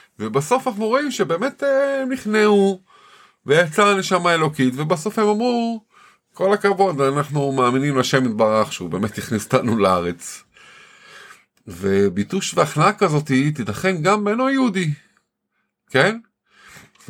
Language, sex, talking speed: Hebrew, male, 110 wpm